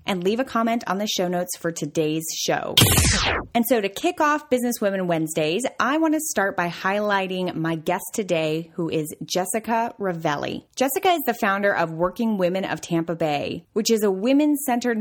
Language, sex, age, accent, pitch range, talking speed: English, female, 20-39, American, 170-240 Hz, 185 wpm